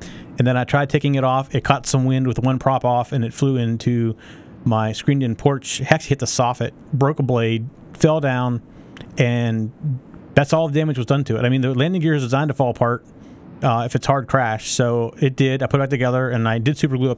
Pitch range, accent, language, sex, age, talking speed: 115-145 Hz, American, English, male, 30-49, 245 wpm